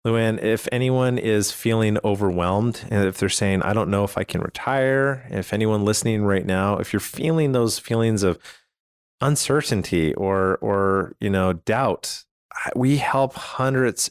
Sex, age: male, 30-49